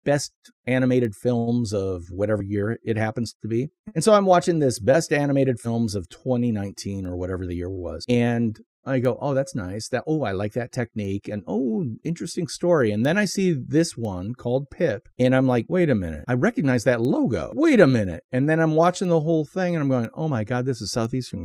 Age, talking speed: 40-59, 220 wpm